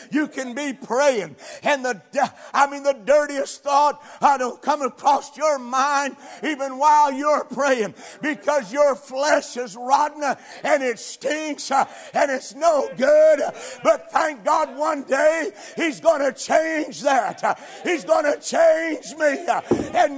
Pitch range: 245-315 Hz